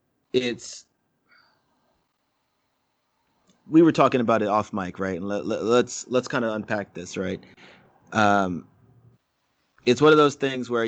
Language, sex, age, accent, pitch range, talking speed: English, male, 30-49, American, 100-115 Hz, 130 wpm